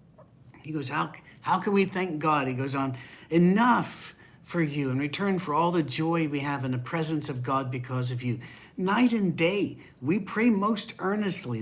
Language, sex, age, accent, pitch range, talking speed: English, male, 60-79, American, 130-160 Hz, 190 wpm